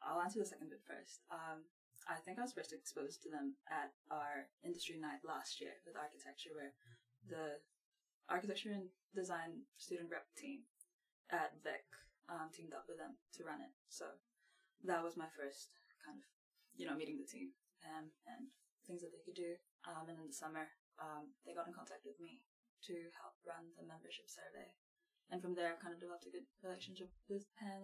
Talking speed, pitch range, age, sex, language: 190 wpm, 160-275 Hz, 10-29, female, English